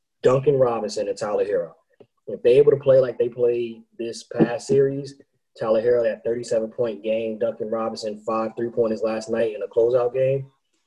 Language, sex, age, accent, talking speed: English, male, 20-39, American, 170 wpm